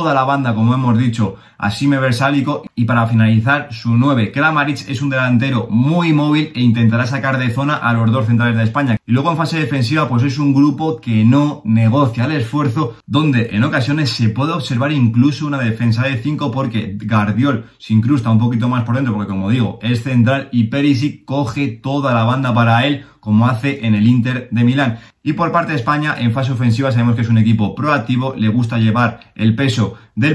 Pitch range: 115-140 Hz